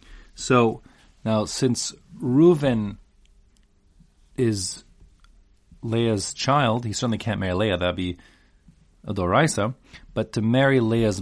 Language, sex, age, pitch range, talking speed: English, male, 30-49, 100-130 Hz, 105 wpm